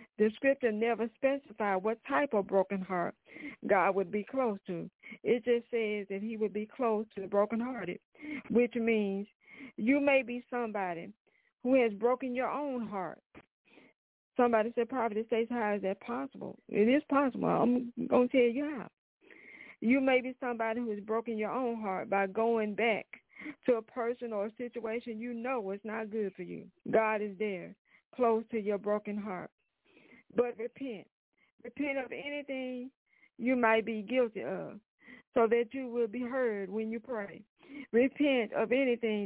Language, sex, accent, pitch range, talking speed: English, female, American, 215-250 Hz, 170 wpm